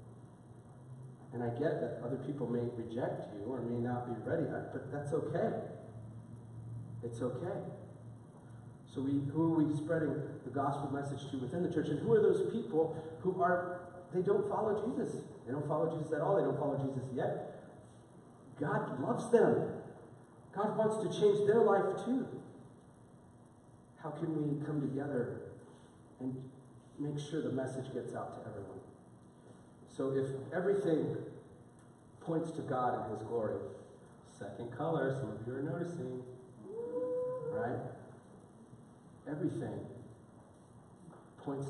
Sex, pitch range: male, 115-155 Hz